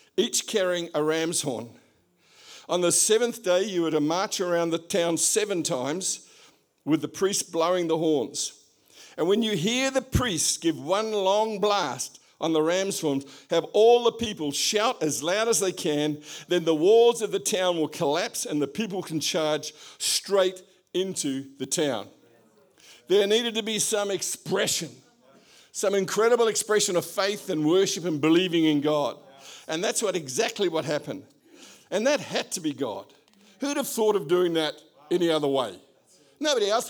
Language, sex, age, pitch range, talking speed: English, male, 50-69, 160-215 Hz, 170 wpm